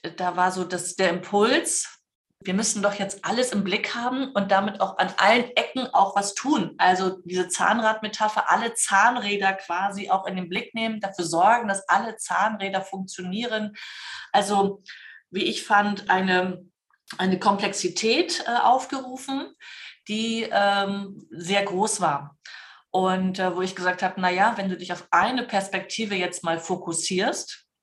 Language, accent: English, German